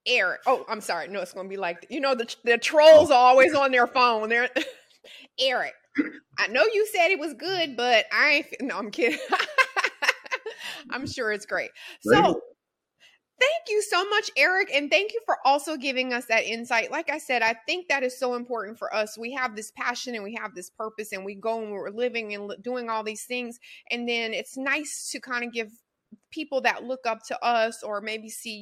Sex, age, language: female, 30-49, English